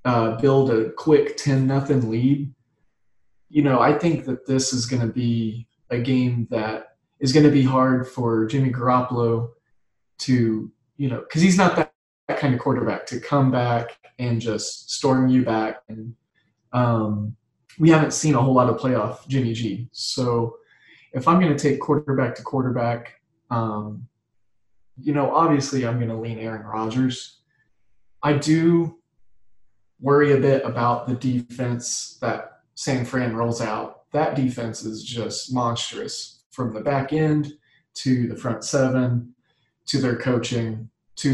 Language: English